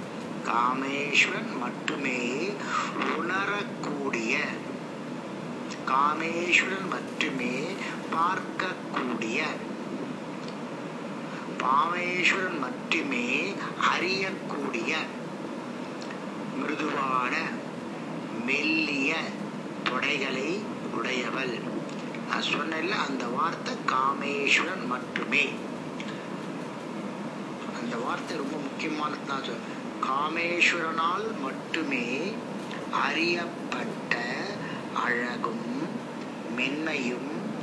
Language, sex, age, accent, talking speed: Tamil, male, 50-69, native, 50 wpm